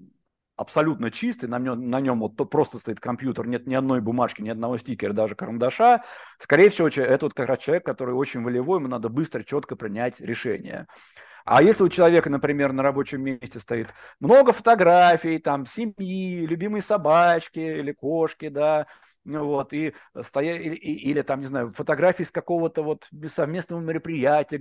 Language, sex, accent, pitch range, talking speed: Russian, male, native, 125-160 Hz, 165 wpm